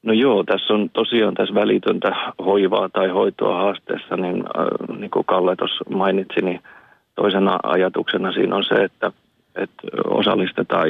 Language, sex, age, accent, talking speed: Finnish, male, 40-59, native, 150 wpm